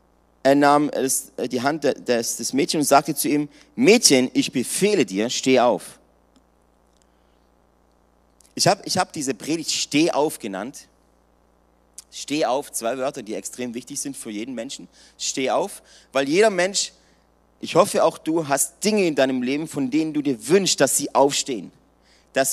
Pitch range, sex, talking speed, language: 130-170 Hz, male, 155 wpm, German